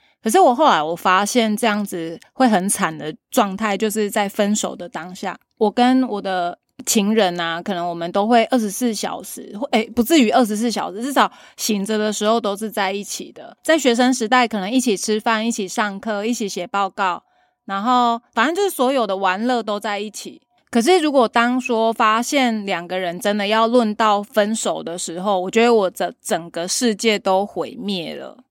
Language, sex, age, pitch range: Chinese, female, 20-39, 190-240 Hz